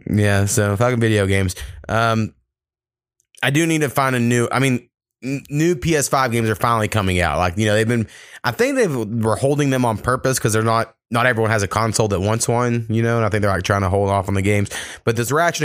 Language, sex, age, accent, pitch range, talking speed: English, male, 20-39, American, 95-120 Hz, 245 wpm